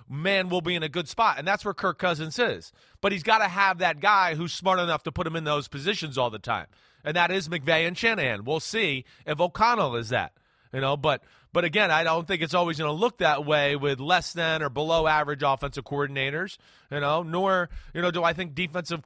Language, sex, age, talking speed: English, male, 30-49, 240 wpm